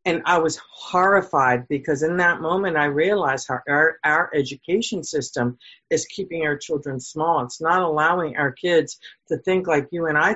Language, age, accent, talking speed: English, 50-69, American, 180 wpm